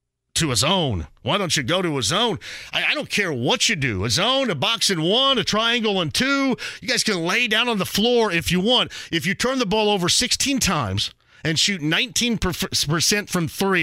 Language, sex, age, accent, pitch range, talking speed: English, male, 40-59, American, 125-195 Hz, 220 wpm